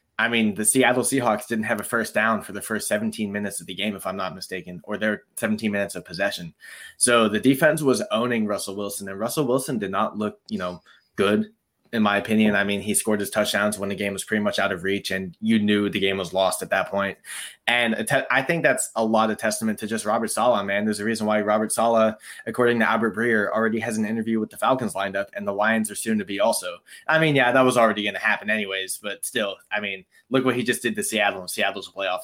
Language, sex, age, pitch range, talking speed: English, male, 20-39, 100-115 Hz, 255 wpm